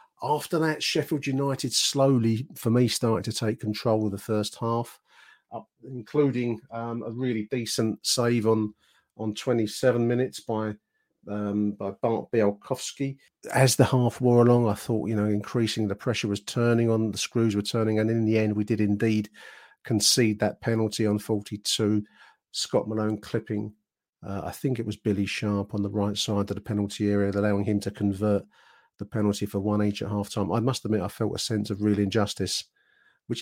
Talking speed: 180 wpm